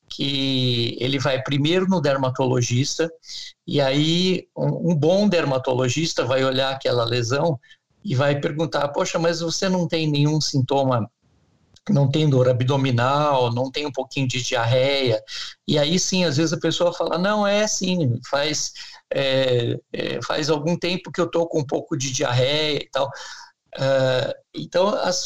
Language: Portuguese